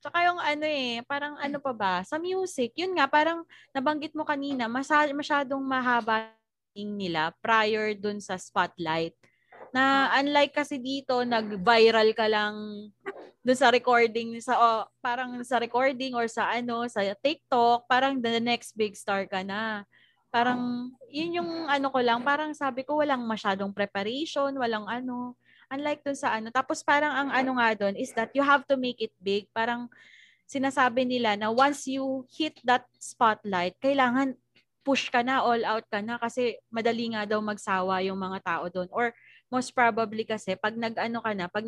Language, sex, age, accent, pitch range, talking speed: Filipino, female, 20-39, native, 210-270 Hz, 170 wpm